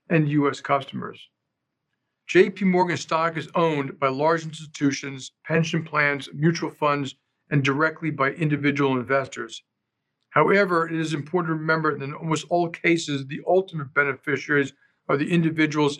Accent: American